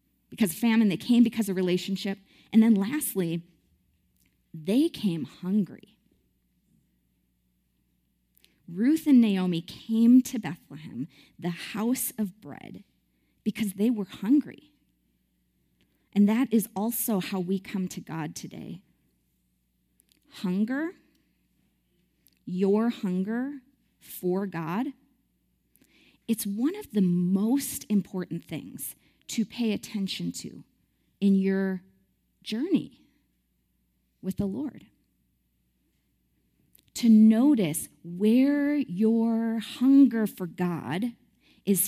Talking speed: 95 wpm